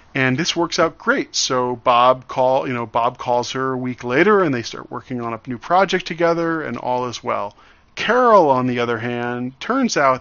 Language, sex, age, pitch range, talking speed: English, male, 40-59, 120-150 Hz, 210 wpm